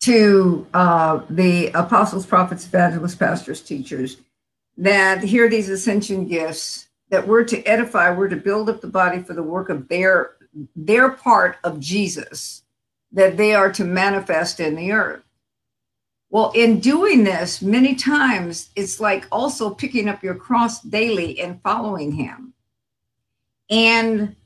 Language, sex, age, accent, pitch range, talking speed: English, female, 50-69, American, 175-230 Hz, 145 wpm